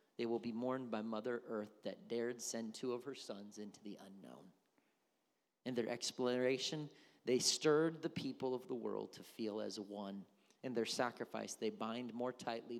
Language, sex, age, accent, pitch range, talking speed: English, male, 40-59, American, 115-140 Hz, 180 wpm